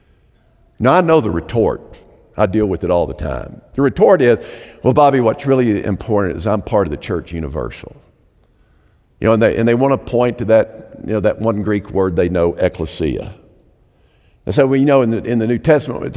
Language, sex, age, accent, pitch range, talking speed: English, male, 50-69, American, 100-125 Hz, 225 wpm